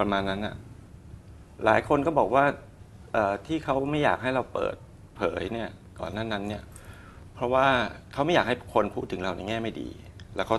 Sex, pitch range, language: male, 95-115 Hz, Thai